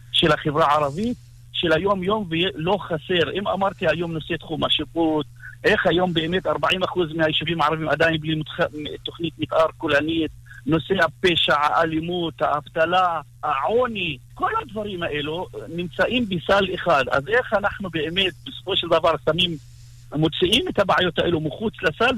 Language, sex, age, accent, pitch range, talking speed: Hebrew, male, 50-69, Lebanese, 150-185 Hz, 135 wpm